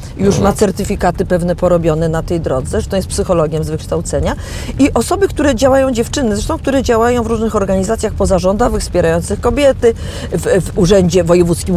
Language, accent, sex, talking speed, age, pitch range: Polish, native, female, 165 wpm, 40-59, 190-255 Hz